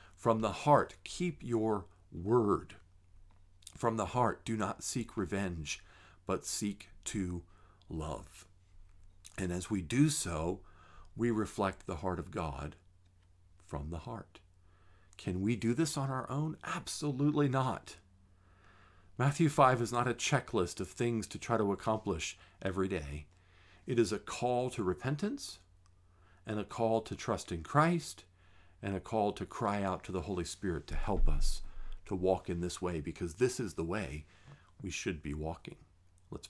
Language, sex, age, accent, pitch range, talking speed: English, male, 50-69, American, 90-100 Hz, 155 wpm